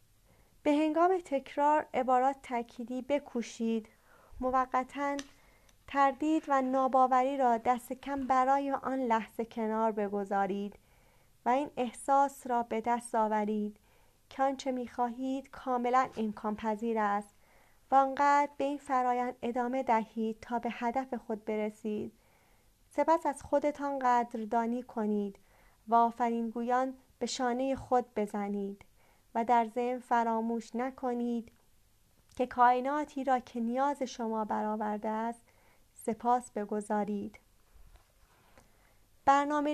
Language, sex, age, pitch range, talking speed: Persian, female, 40-59, 215-265 Hz, 110 wpm